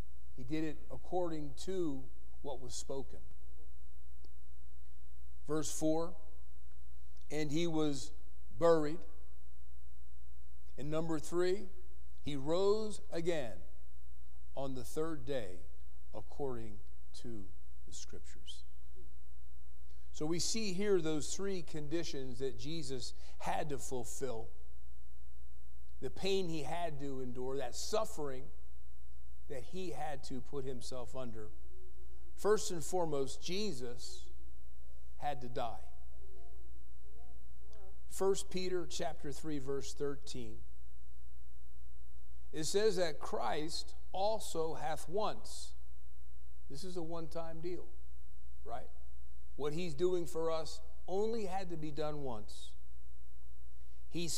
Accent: American